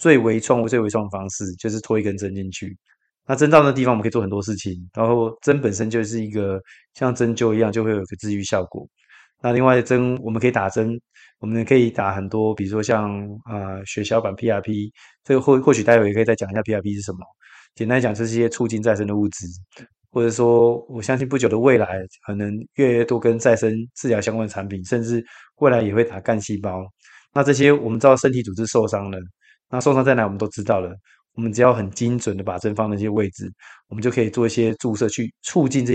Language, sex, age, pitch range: Chinese, male, 20-39, 105-120 Hz